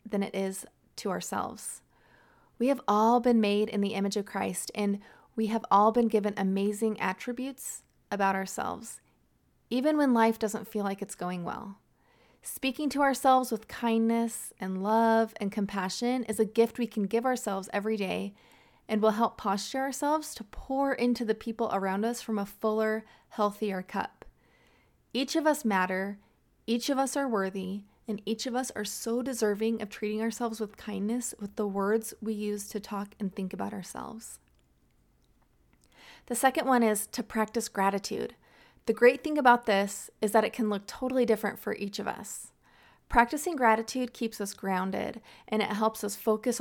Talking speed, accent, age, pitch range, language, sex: 175 wpm, American, 30-49, 200-235 Hz, English, female